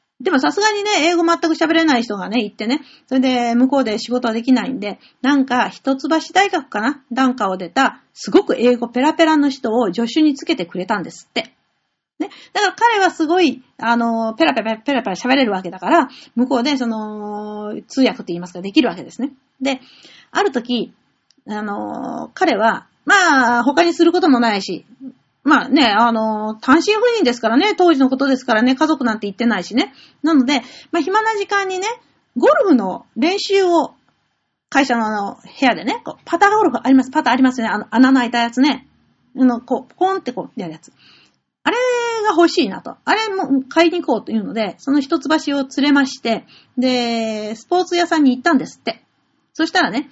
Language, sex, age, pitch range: Japanese, female, 40-59, 235-325 Hz